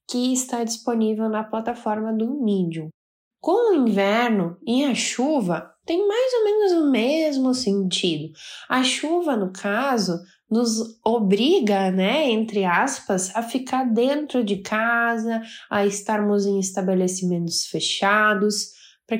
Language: Portuguese